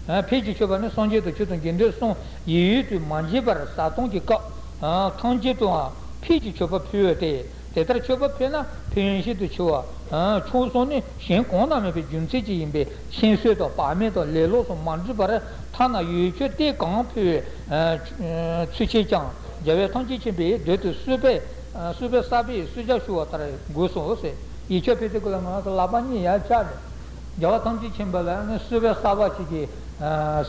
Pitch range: 170-225 Hz